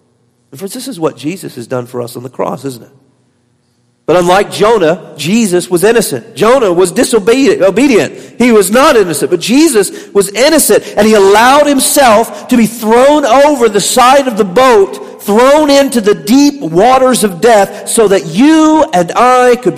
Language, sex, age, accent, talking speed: English, male, 50-69, American, 170 wpm